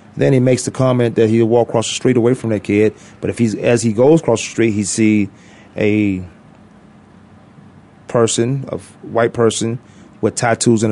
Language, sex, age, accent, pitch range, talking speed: English, male, 30-49, American, 110-125 Hz, 185 wpm